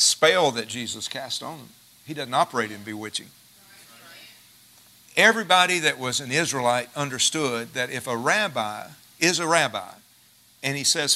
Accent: American